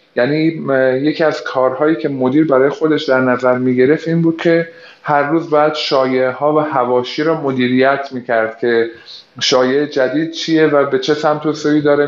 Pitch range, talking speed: 125-150 Hz, 180 wpm